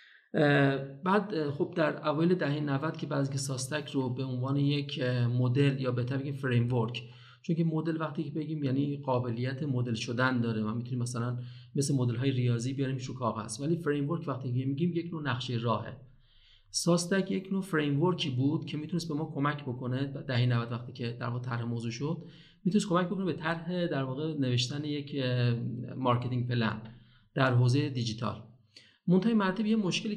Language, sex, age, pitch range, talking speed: Persian, male, 40-59, 125-155 Hz, 175 wpm